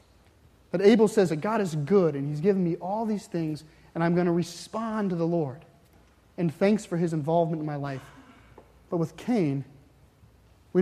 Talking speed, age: 190 wpm, 30-49